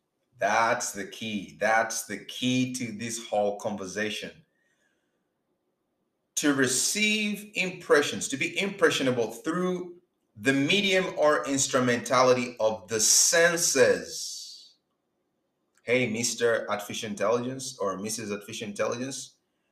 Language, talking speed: English, 95 wpm